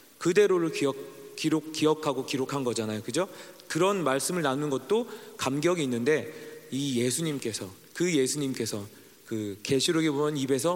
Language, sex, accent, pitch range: Korean, male, native, 125-180 Hz